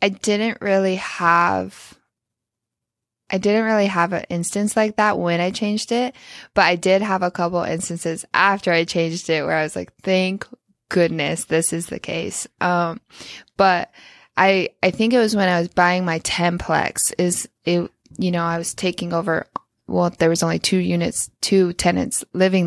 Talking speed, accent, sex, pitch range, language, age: 175 wpm, American, female, 170-195 Hz, English, 20-39